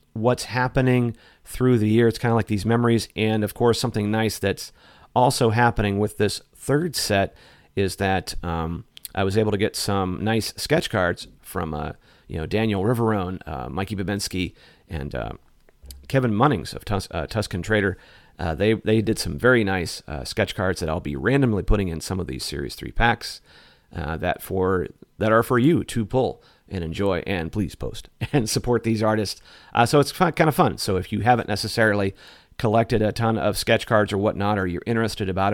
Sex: male